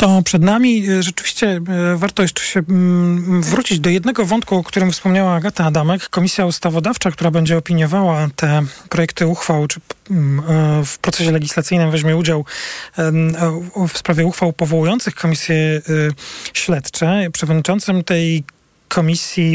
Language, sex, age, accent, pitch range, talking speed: Polish, male, 40-59, native, 155-180 Hz, 120 wpm